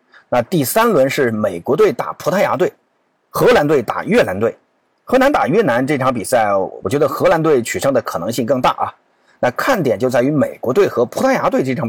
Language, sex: Chinese, male